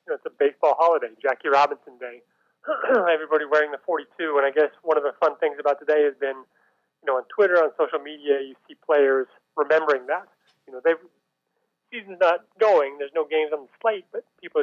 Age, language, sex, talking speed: 30-49, English, male, 210 wpm